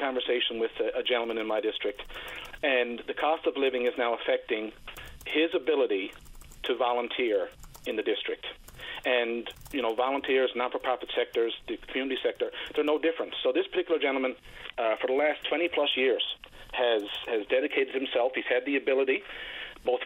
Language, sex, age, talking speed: English, male, 40-59, 160 wpm